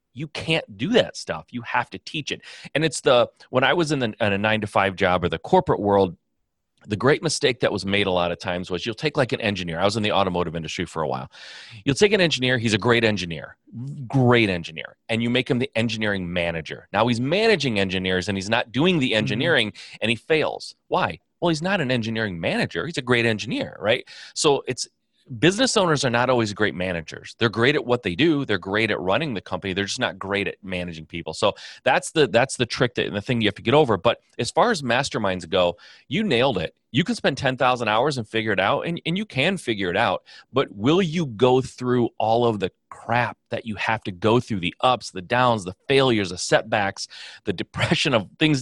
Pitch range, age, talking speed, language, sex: 100-135 Hz, 30-49, 235 wpm, English, male